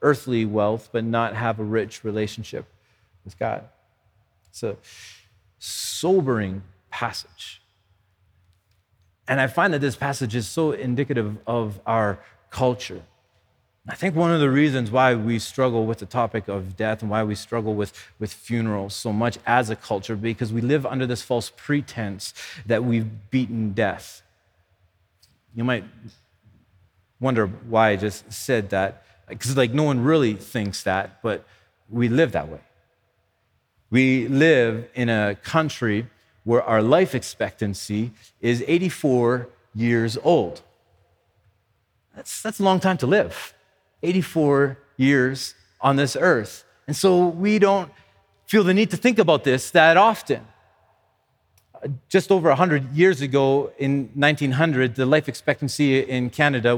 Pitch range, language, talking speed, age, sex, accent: 105-135 Hz, English, 140 wpm, 30-49, male, American